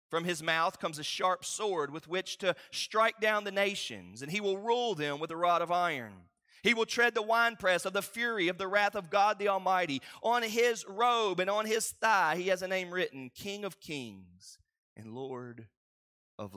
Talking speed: 205 wpm